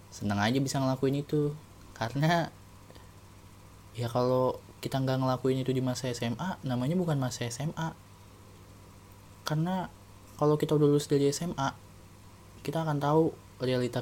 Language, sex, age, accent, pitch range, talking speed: Indonesian, male, 20-39, native, 100-130 Hz, 130 wpm